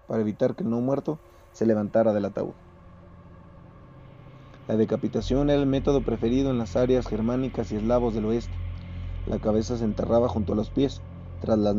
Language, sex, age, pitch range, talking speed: Spanish, male, 30-49, 95-120 Hz, 170 wpm